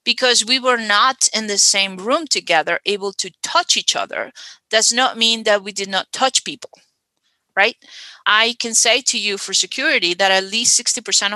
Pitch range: 195-240 Hz